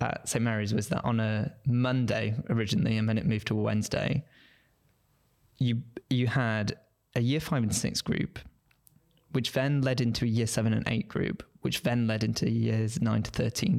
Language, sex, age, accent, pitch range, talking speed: English, male, 20-39, British, 115-135 Hz, 185 wpm